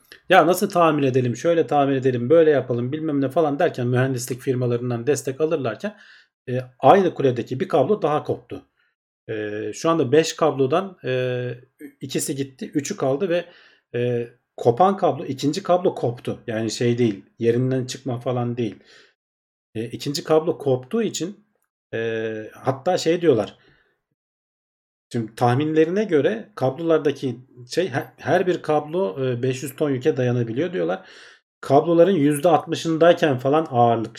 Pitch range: 120-160 Hz